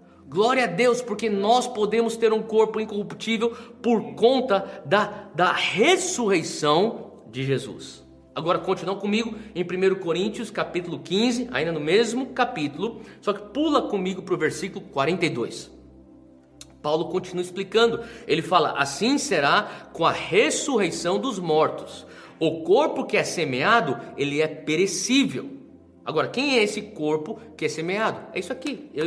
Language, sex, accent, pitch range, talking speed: Portuguese, male, Brazilian, 165-250 Hz, 140 wpm